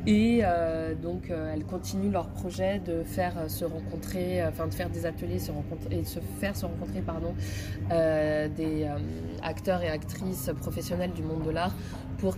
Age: 20-39